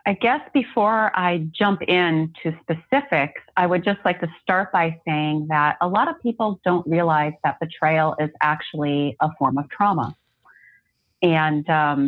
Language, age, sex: English, 30-49, female